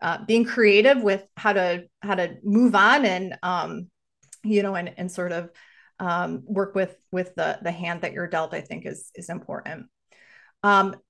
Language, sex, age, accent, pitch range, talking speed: English, female, 30-49, American, 190-235 Hz, 185 wpm